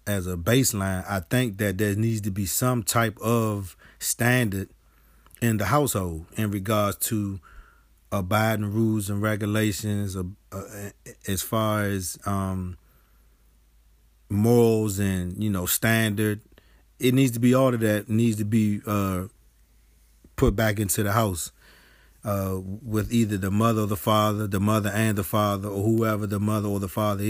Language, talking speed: English, 155 wpm